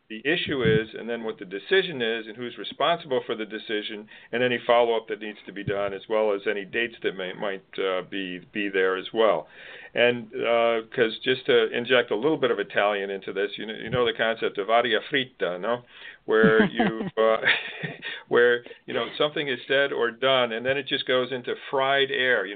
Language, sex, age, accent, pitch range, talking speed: English, male, 50-69, American, 115-145 Hz, 215 wpm